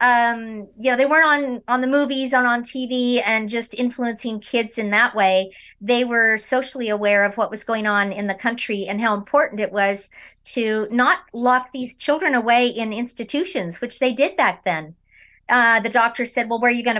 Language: English